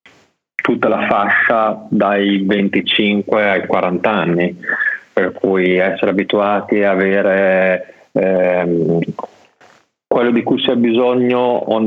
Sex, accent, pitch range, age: male, native, 95-105 Hz, 30-49